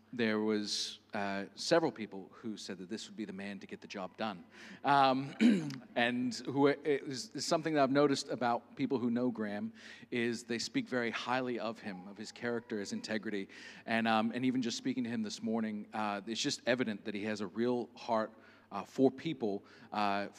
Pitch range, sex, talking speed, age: 110-140 Hz, male, 200 wpm, 40-59